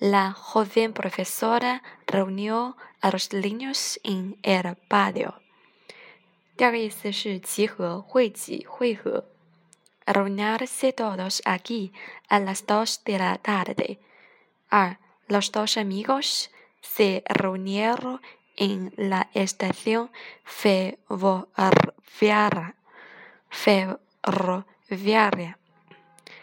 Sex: female